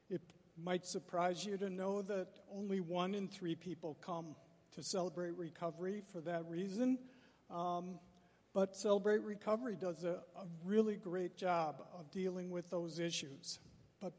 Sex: male